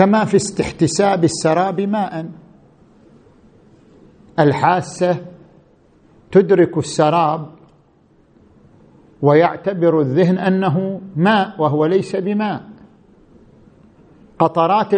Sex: male